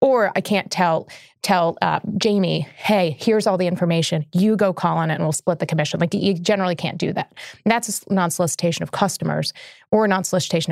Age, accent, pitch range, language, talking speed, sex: 30-49, American, 170-205 Hz, English, 205 wpm, female